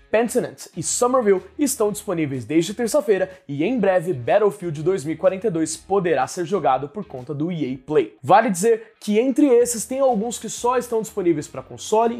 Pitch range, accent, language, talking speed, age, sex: 170-240 Hz, Brazilian, Portuguese, 160 wpm, 20-39, male